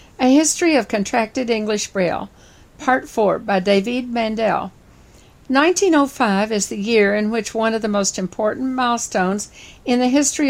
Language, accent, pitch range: English, American, 205-255 Hz